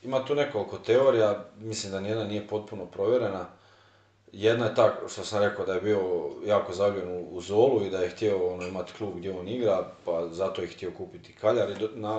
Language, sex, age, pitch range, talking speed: Croatian, male, 40-59, 95-120 Hz, 205 wpm